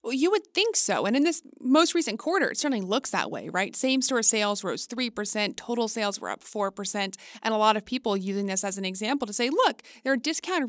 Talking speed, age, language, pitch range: 235 wpm, 30-49, English, 195-260 Hz